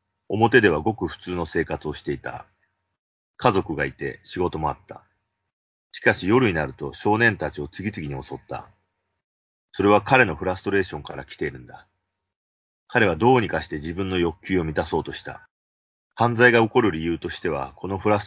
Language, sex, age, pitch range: Japanese, male, 40-59, 75-100 Hz